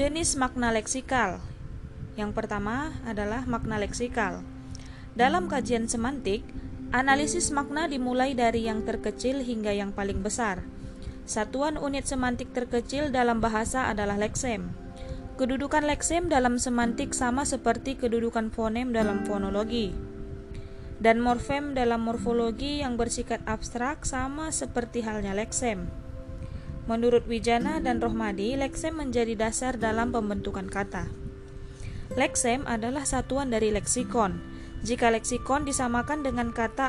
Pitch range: 215-260 Hz